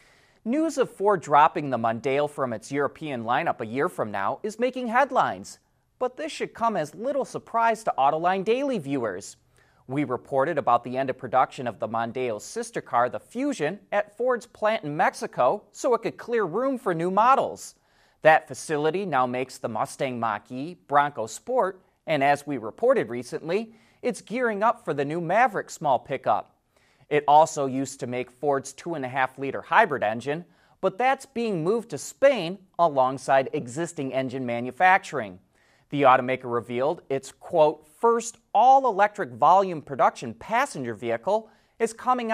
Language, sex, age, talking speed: English, male, 30-49, 155 wpm